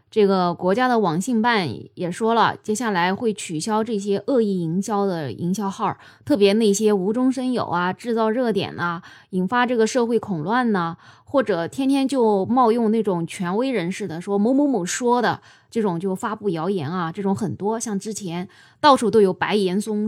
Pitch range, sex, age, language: 180-225 Hz, female, 20-39, Chinese